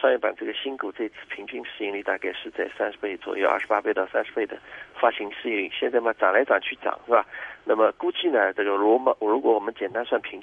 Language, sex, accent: Chinese, male, native